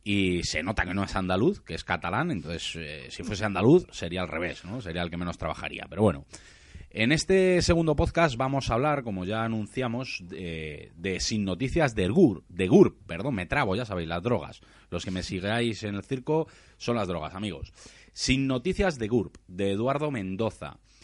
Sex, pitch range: male, 90-130 Hz